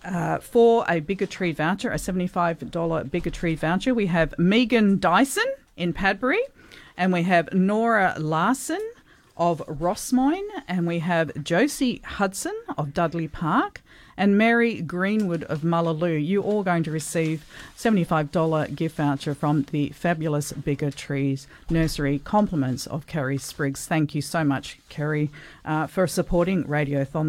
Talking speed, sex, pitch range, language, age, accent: 145 wpm, female, 160-225 Hz, English, 50-69, Australian